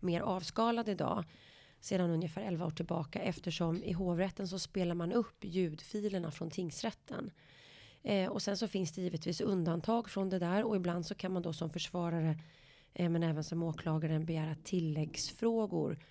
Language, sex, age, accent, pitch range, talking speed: Swedish, female, 30-49, native, 160-195 Hz, 155 wpm